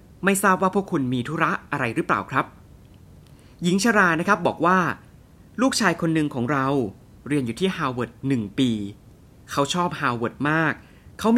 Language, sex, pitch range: Thai, male, 120-185 Hz